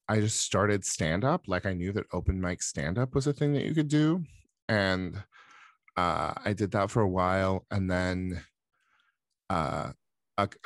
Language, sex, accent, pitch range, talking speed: English, male, American, 85-110 Hz, 170 wpm